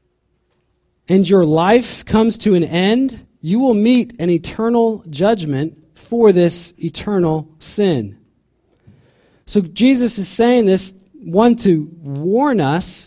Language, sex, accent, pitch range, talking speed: English, male, American, 145-195 Hz, 120 wpm